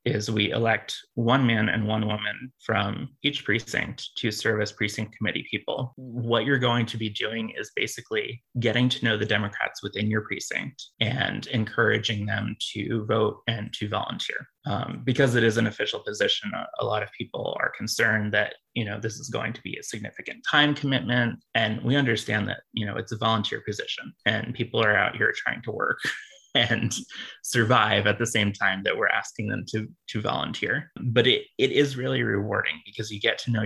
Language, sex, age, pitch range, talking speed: English, male, 20-39, 110-125 Hz, 195 wpm